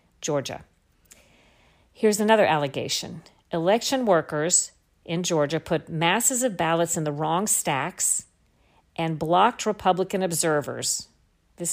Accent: American